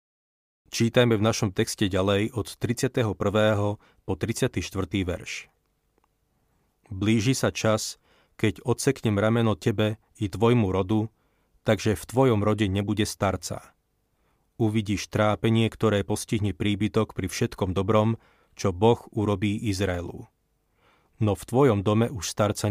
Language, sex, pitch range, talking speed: Slovak, male, 100-115 Hz, 115 wpm